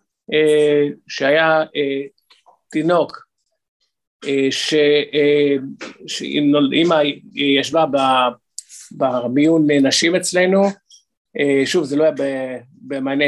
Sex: male